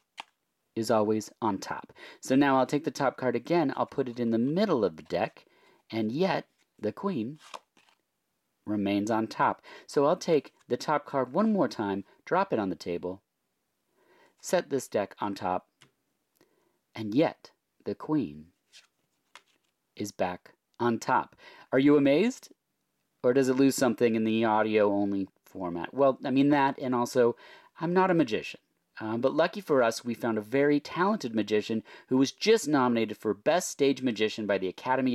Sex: male